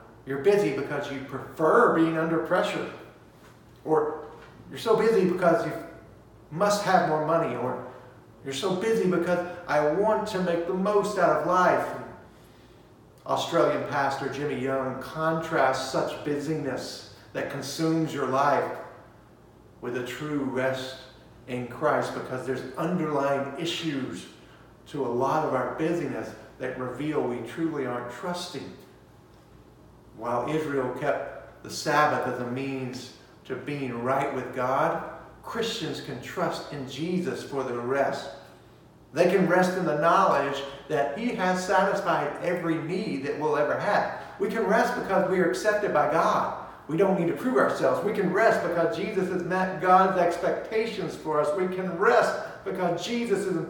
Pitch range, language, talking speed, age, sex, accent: 135-180 Hz, English, 150 wpm, 50-69, male, American